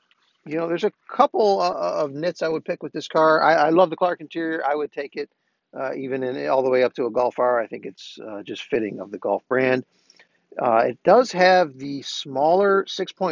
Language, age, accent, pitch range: English, 50-69, American, 130-165 Hz